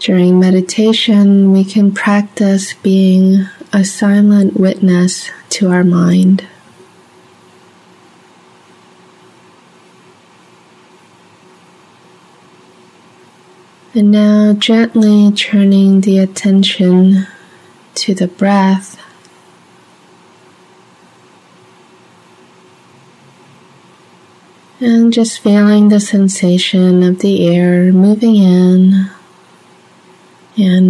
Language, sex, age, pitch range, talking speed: English, female, 20-39, 185-205 Hz, 60 wpm